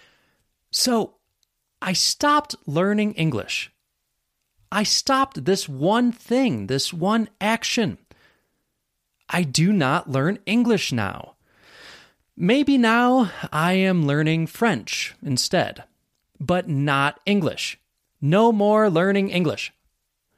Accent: American